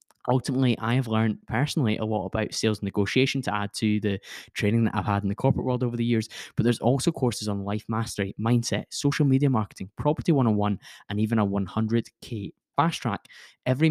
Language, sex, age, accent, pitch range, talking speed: English, male, 10-29, British, 100-120 Hz, 195 wpm